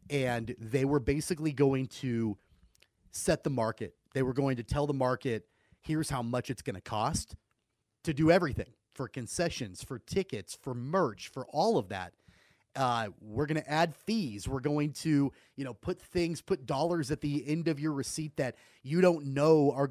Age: 30-49